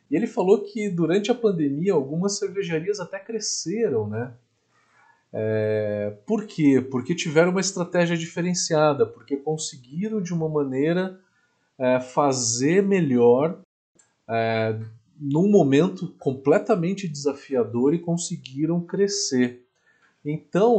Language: Portuguese